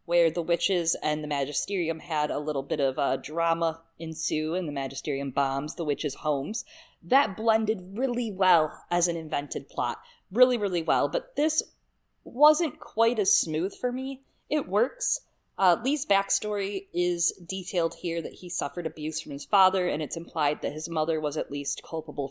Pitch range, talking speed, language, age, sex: 155-225 Hz, 180 wpm, English, 20-39, female